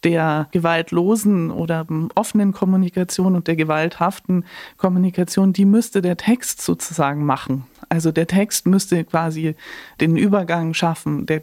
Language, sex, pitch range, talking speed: German, female, 160-185 Hz, 125 wpm